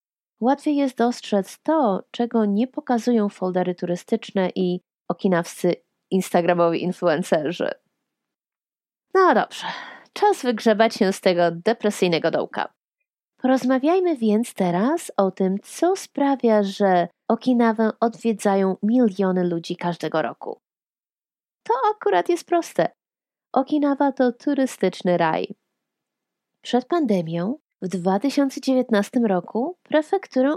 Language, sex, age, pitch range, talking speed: Polish, female, 30-49, 195-285 Hz, 100 wpm